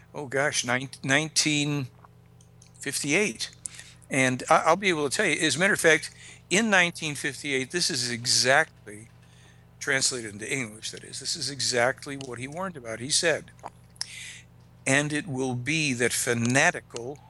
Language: English